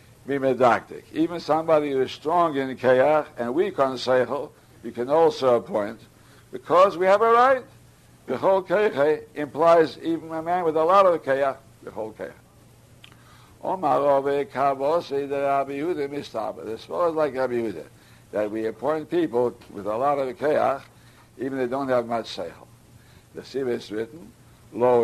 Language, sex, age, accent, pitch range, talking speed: English, male, 60-79, American, 120-155 Hz, 135 wpm